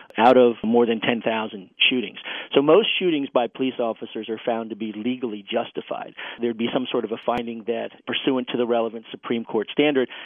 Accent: American